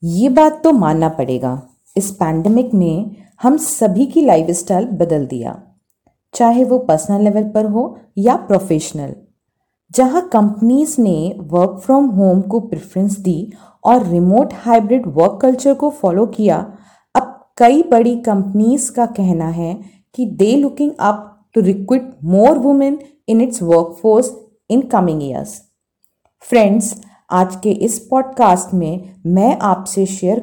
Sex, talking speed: female, 140 wpm